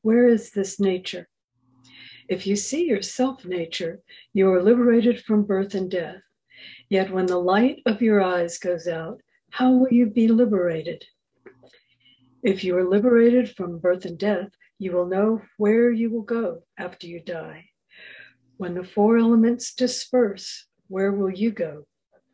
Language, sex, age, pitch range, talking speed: English, female, 60-79, 180-220 Hz, 155 wpm